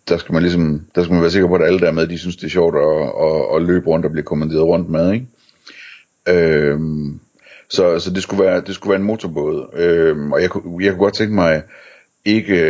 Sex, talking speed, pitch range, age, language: male, 240 wpm, 80-100 Hz, 60-79, Danish